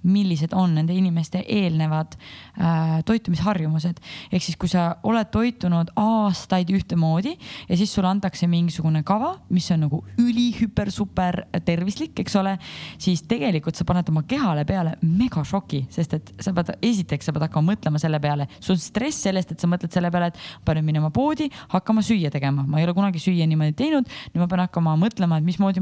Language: English